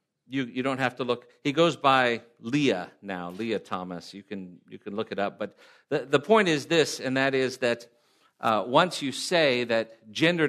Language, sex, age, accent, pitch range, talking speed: English, male, 50-69, American, 110-145 Hz, 205 wpm